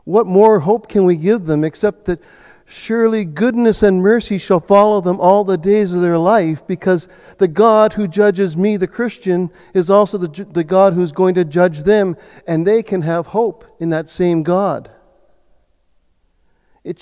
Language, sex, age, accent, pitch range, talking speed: English, male, 50-69, American, 125-190 Hz, 175 wpm